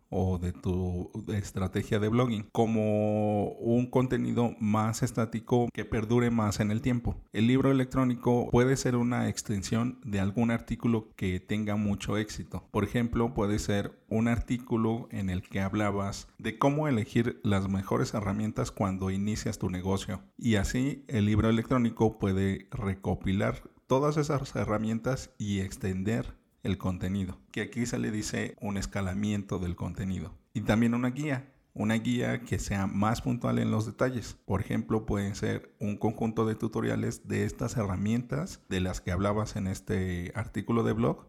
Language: Spanish